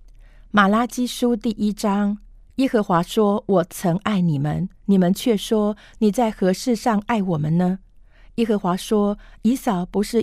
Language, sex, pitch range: Chinese, female, 180-220 Hz